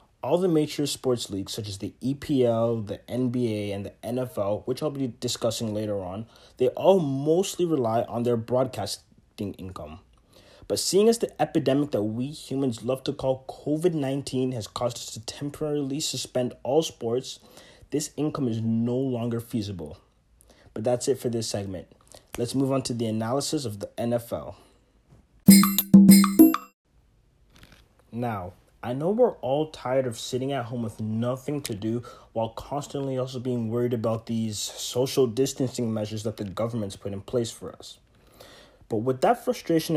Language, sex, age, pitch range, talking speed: English, male, 30-49, 110-140 Hz, 160 wpm